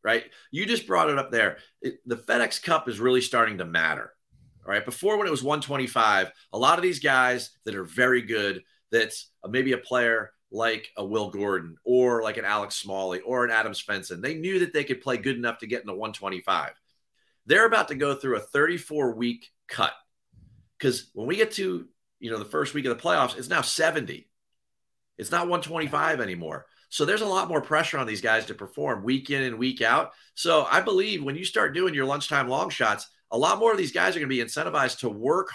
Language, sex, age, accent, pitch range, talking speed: English, male, 30-49, American, 120-160 Hz, 220 wpm